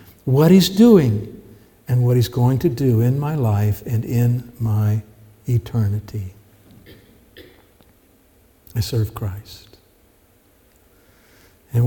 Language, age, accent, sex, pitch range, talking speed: English, 60-79, American, male, 105-125 Hz, 100 wpm